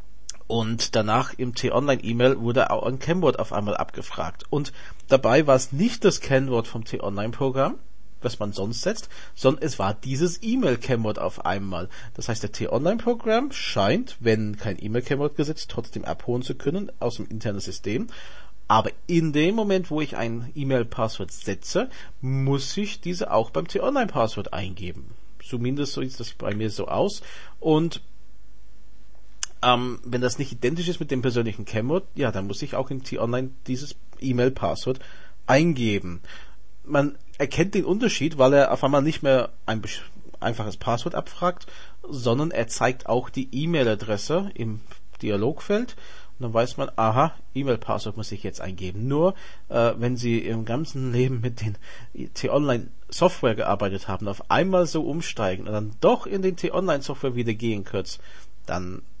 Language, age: German, 40-59